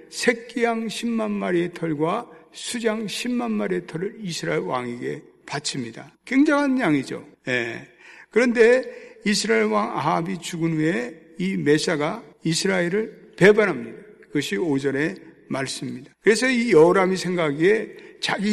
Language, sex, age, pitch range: Korean, male, 60-79, 155-225 Hz